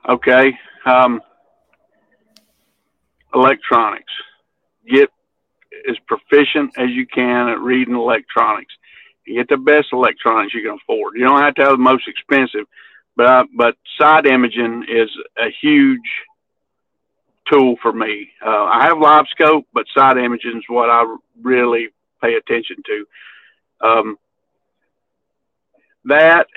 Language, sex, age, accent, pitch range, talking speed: English, male, 50-69, American, 120-155 Hz, 120 wpm